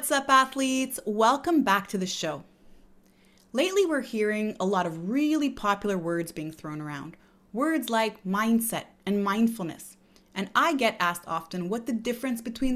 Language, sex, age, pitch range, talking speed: English, female, 30-49, 190-245 Hz, 160 wpm